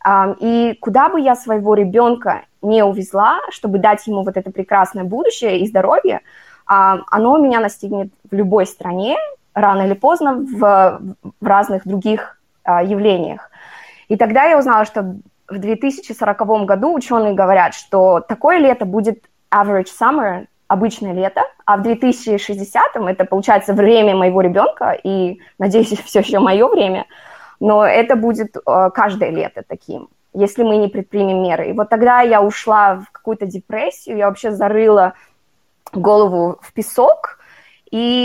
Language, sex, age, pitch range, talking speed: Russian, female, 20-39, 195-235 Hz, 140 wpm